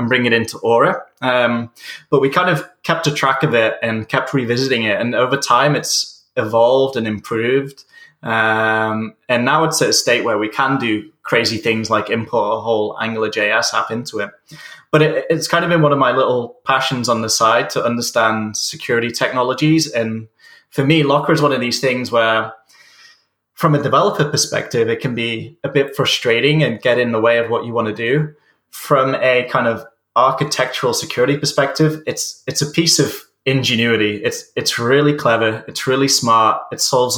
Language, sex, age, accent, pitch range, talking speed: English, male, 20-39, British, 110-135 Hz, 190 wpm